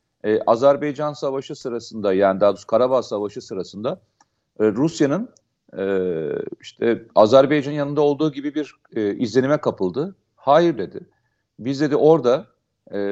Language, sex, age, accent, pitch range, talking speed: Turkish, male, 40-59, native, 120-170 Hz, 130 wpm